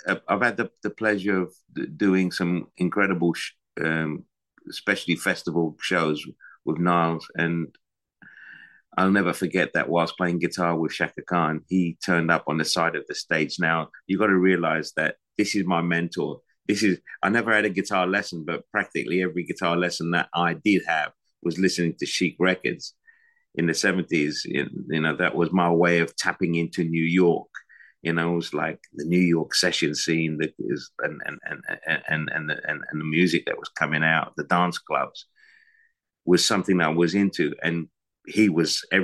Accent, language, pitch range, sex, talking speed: British, English, 85-105 Hz, male, 180 wpm